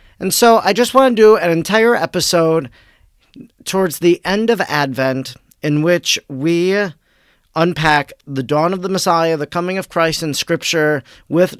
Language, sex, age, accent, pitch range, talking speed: English, male, 40-59, American, 155-185 Hz, 160 wpm